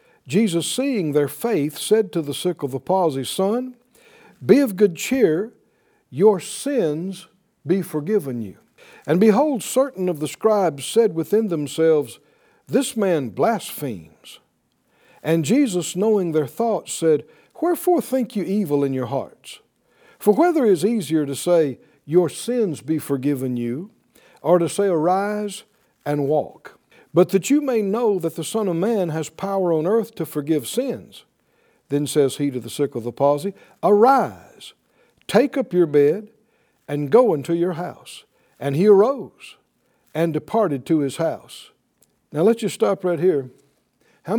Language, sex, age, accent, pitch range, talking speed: English, male, 60-79, American, 150-210 Hz, 155 wpm